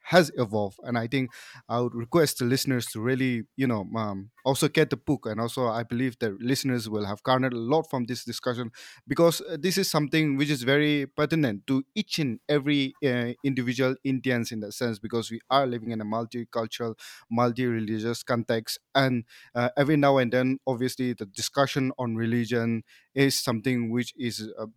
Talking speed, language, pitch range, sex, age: 185 wpm, English, 115-135 Hz, male, 20-39